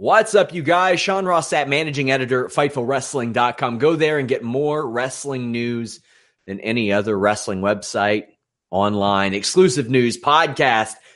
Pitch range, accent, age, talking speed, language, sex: 115-145 Hz, American, 30-49, 145 wpm, English, male